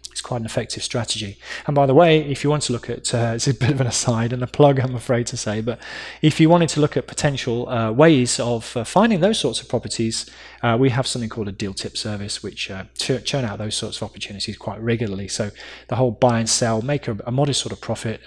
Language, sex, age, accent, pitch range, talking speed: English, male, 20-39, British, 115-140 Hz, 245 wpm